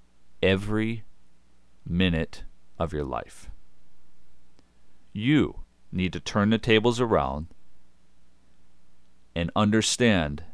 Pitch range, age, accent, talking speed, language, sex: 70-105 Hz, 40-59, American, 80 wpm, English, male